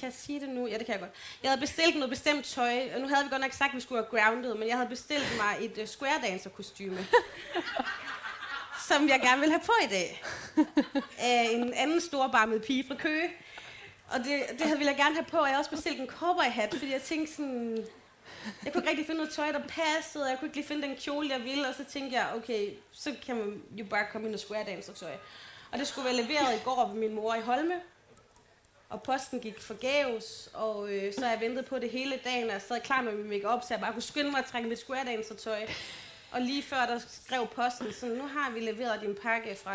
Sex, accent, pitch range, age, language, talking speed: female, native, 220-285 Hz, 30-49, Danish, 250 wpm